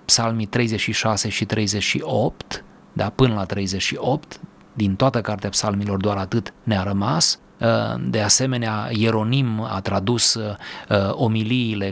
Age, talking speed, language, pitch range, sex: 30-49, 110 wpm, Romanian, 100-120 Hz, male